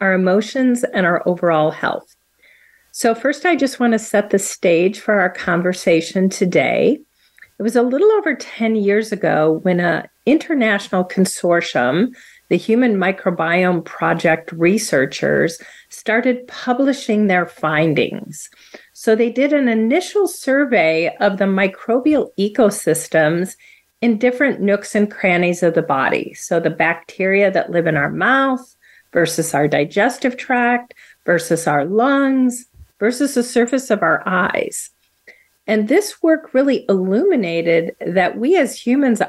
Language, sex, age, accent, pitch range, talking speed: English, female, 40-59, American, 180-260 Hz, 135 wpm